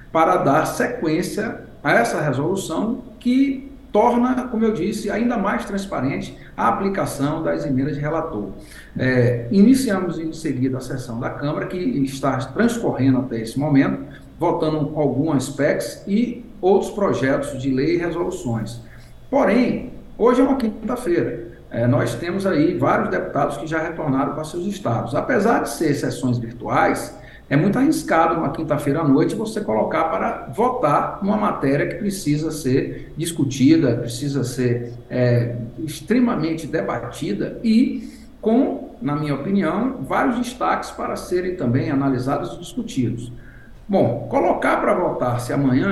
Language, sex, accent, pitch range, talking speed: English, male, Brazilian, 130-215 Hz, 135 wpm